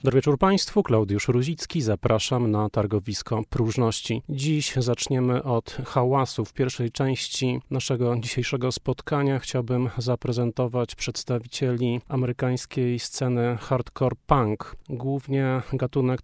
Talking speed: 105 wpm